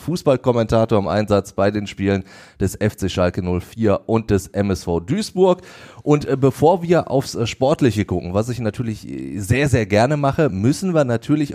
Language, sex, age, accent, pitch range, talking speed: German, male, 30-49, German, 105-135 Hz, 155 wpm